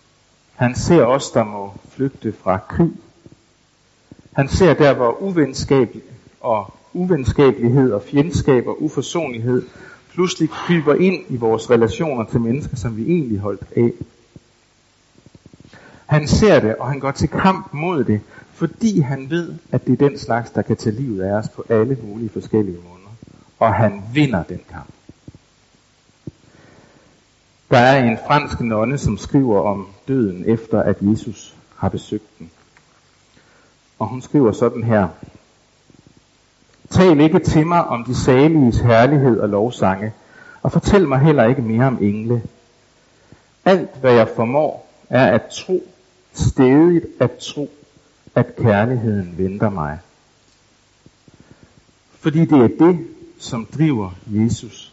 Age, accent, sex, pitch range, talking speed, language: 60-79, native, male, 110-145 Hz, 135 wpm, Danish